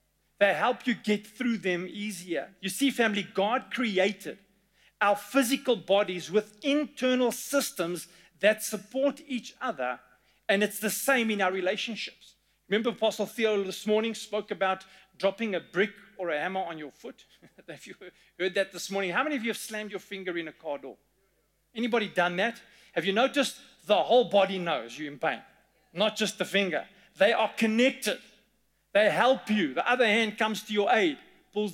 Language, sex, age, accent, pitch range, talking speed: English, male, 40-59, South African, 185-230 Hz, 180 wpm